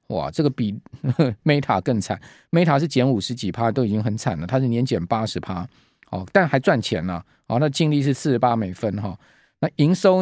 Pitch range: 110-150 Hz